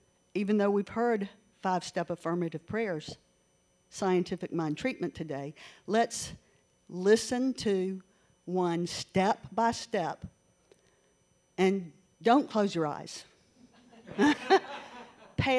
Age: 50-69